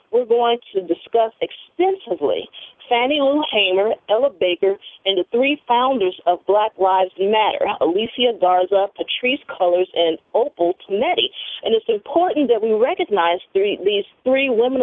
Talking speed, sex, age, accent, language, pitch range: 140 wpm, female, 40-59, American, English, 185-315 Hz